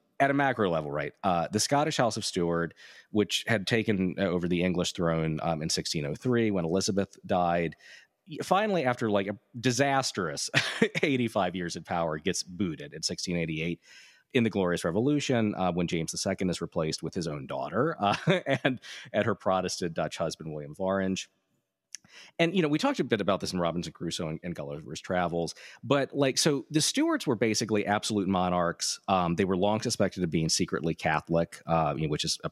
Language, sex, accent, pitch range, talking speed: English, male, American, 85-115 Hz, 180 wpm